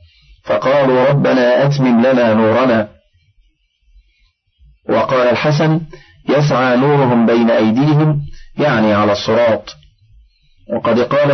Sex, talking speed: male, 85 wpm